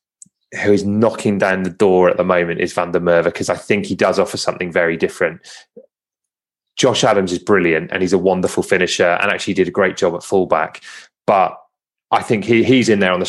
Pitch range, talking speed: 85-100 Hz, 215 wpm